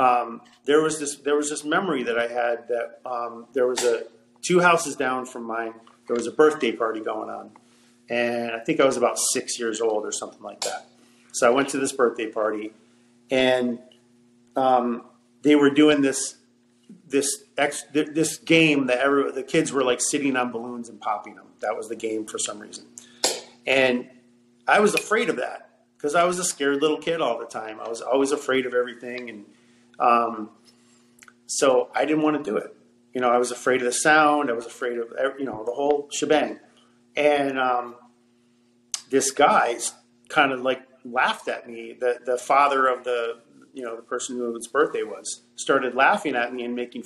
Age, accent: 40-59, American